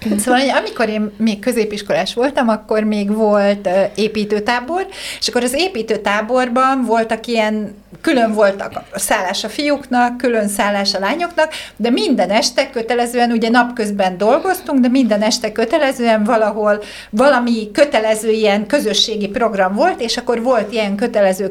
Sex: female